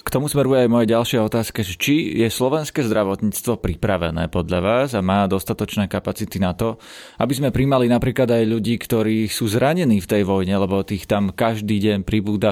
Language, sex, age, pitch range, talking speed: Slovak, male, 30-49, 95-115 Hz, 180 wpm